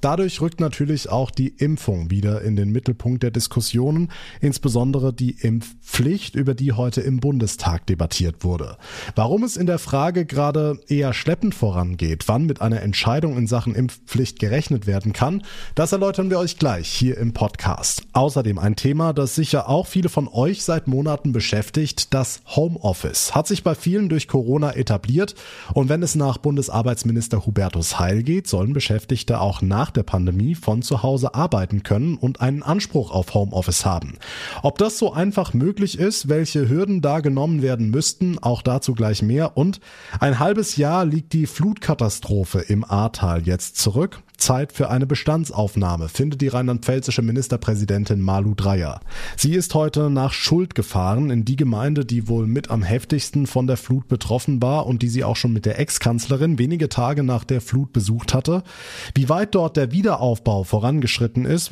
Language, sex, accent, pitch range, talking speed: German, male, German, 110-150 Hz, 170 wpm